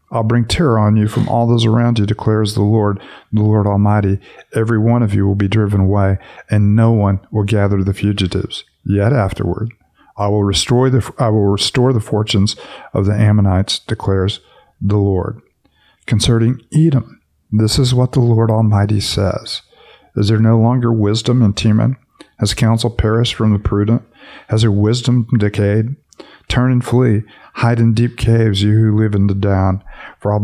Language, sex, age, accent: English, male, 50-69, American